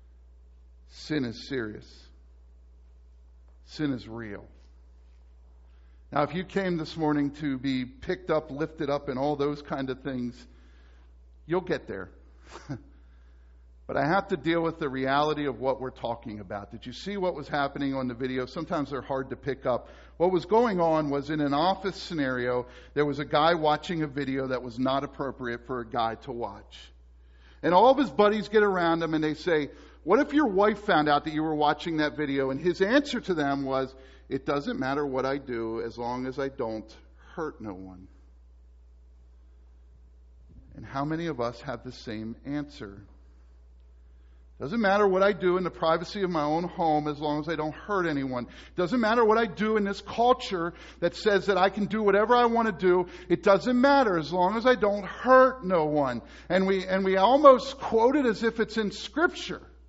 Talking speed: 190 wpm